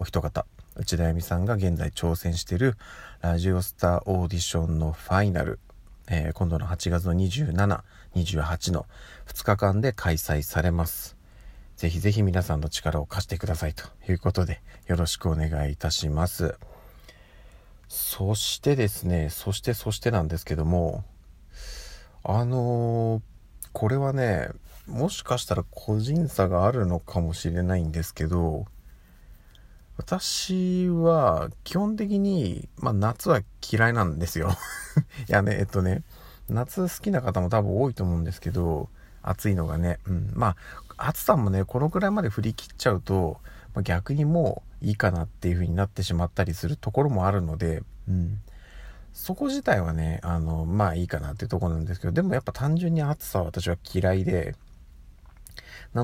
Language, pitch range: Japanese, 85-110 Hz